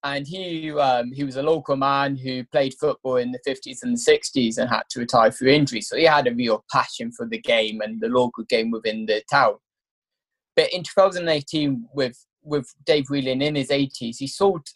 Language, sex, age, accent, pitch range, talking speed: English, male, 20-39, British, 125-170 Hz, 205 wpm